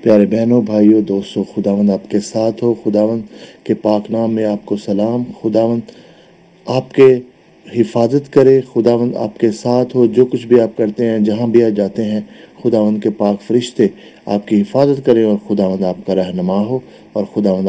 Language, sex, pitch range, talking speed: English, male, 105-130 Hz, 165 wpm